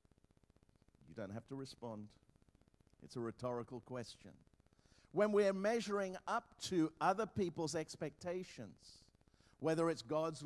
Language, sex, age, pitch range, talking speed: English, male, 50-69, 140-185 Hz, 115 wpm